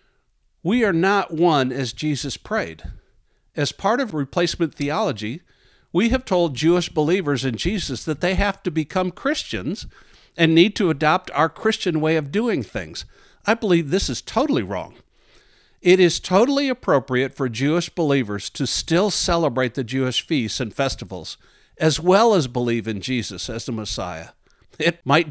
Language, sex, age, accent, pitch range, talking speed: English, male, 60-79, American, 120-170 Hz, 160 wpm